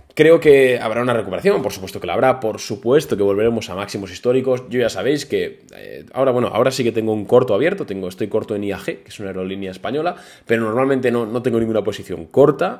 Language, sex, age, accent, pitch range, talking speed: Spanish, male, 20-39, Spanish, 100-140 Hz, 230 wpm